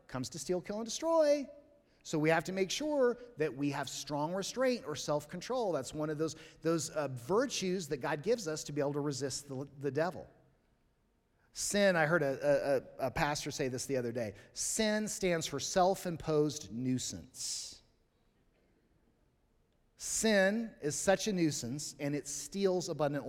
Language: English